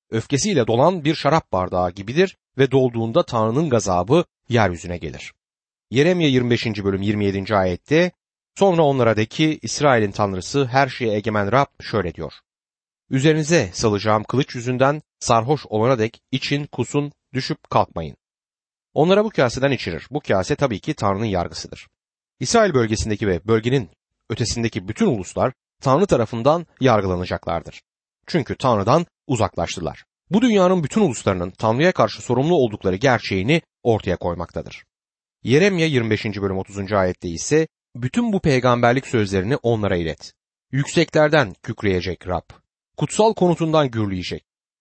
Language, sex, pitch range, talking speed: Turkish, male, 100-145 Hz, 125 wpm